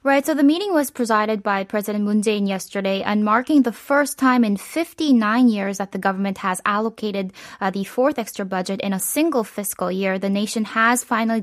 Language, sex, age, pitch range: Korean, female, 20-39, 195-245 Hz